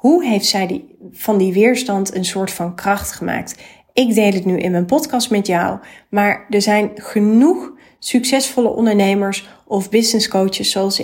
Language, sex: Dutch, female